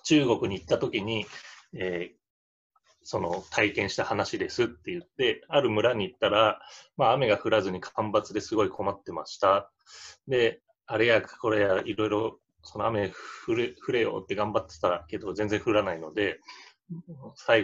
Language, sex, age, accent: Japanese, male, 30-49, native